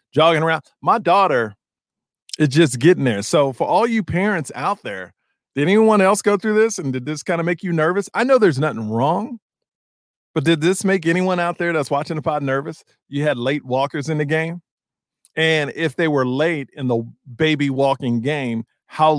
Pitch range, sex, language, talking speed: 135-190 Hz, male, English, 200 wpm